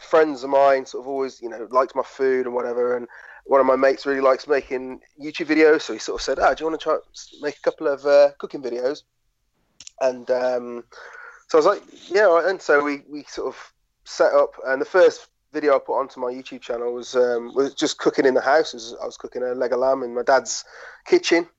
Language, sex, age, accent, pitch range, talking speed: English, male, 30-49, British, 125-170 Hz, 245 wpm